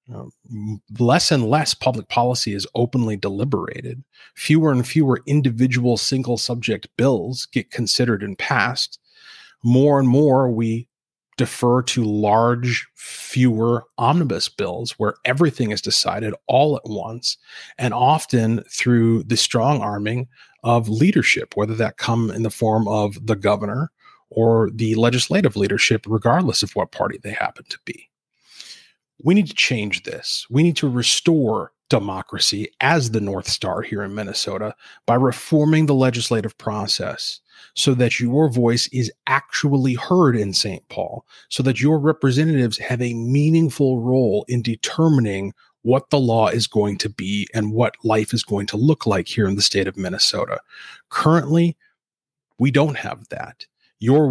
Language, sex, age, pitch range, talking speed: English, male, 30-49, 110-140 Hz, 150 wpm